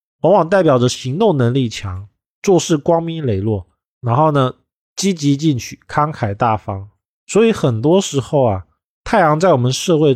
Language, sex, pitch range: Chinese, male, 110-155 Hz